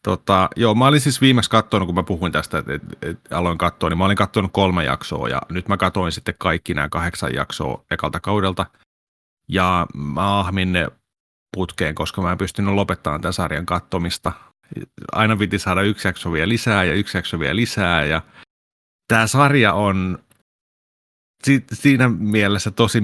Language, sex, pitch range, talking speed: Finnish, male, 85-105 Hz, 170 wpm